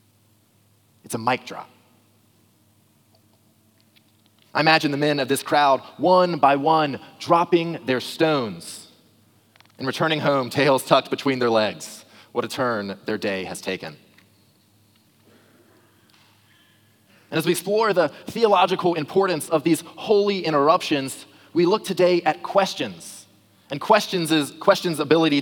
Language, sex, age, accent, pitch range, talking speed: English, male, 30-49, American, 110-170 Hz, 125 wpm